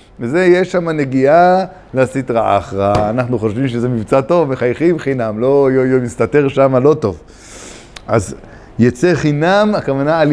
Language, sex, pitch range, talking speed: Hebrew, male, 110-145 Hz, 145 wpm